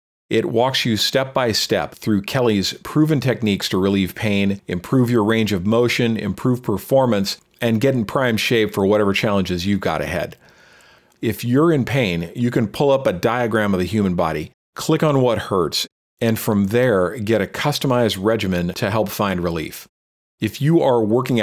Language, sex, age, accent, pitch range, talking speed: English, male, 40-59, American, 95-120 Hz, 175 wpm